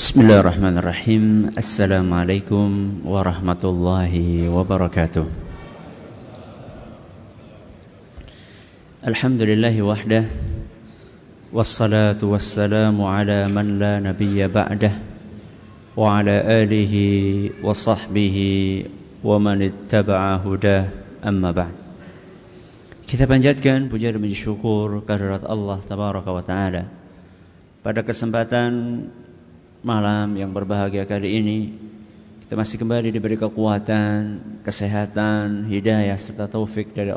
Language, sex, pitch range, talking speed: Indonesian, male, 100-110 Hz, 75 wpm